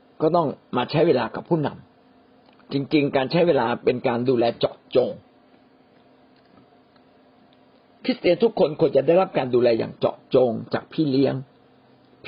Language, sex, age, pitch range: Thai, male, 60-79, 125-190 Hz